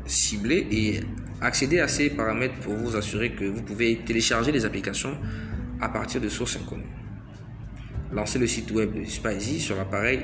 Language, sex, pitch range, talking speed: French, male, 105-120 Hz, 160 wpm